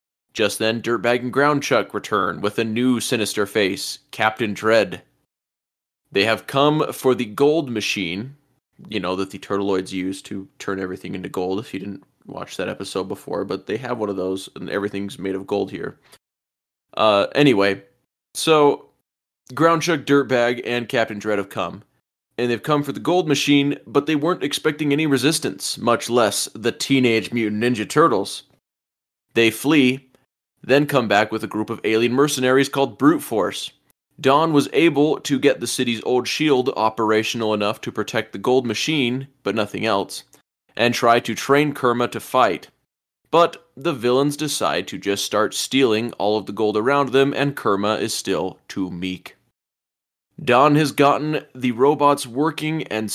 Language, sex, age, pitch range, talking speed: English, male, 20-39, 105-140 Hz, 165 wpm